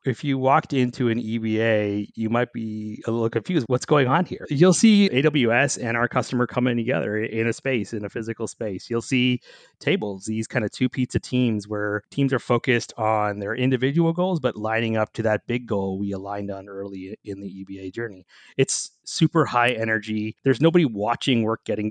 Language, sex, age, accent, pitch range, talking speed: English, male, 30-49, American, 105-130 Hz, 195 wpm